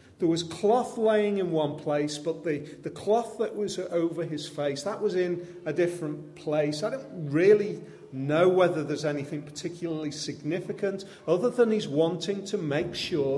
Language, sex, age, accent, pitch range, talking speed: English, male, 40-59, British, 145-205 Hz, 170 wpm